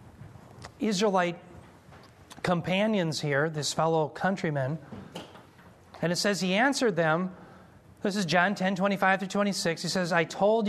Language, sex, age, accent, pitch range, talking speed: English, male, 40-59, American, 160-205 Hz, 130 wpm